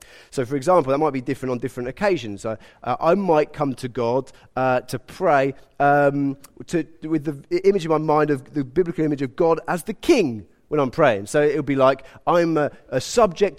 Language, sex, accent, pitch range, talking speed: English, male, British, 125-160 Hz, 210 wpm